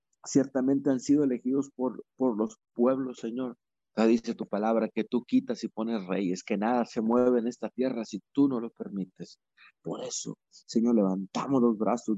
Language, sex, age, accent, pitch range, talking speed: Spanish, male, 50-69, Mexican, 120-140 Hz, 190 wpm